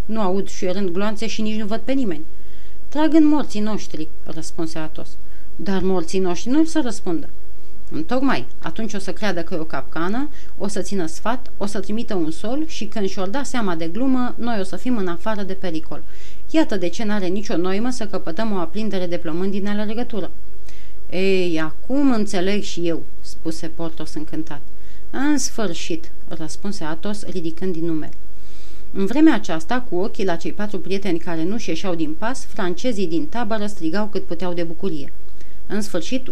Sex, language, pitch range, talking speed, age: female, Romanian, 170-230 Hz, 185 wpm, 30-49